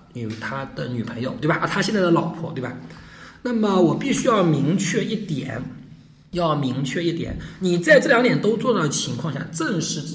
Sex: male